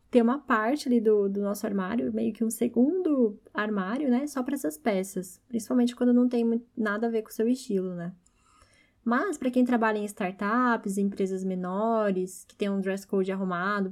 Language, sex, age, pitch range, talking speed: Portuguese, female, 10-29, 195-245 Hz, 195 wpm